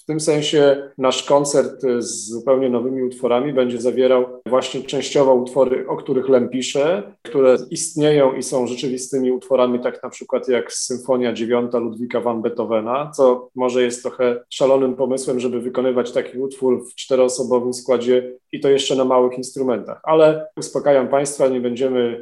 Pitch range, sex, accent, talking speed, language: 125-140 Hz, male, native, 155 wpm, Polish